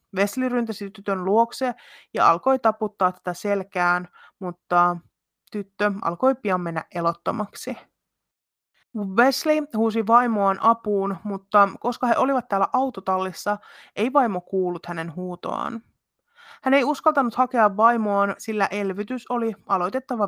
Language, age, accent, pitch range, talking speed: Finnish, 30-49, native, 195-240 Hz, 115 wpm